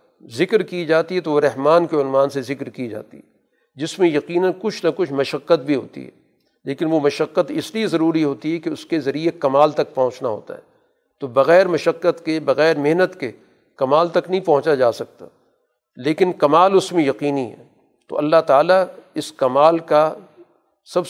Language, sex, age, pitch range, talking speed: Urdu, male, 50-69, 145-170 Hz, 190 wpm